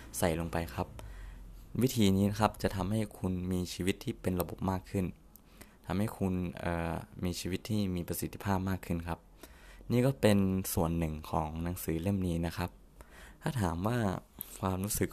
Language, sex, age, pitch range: Thai, male, 20-39, 85-100 Hz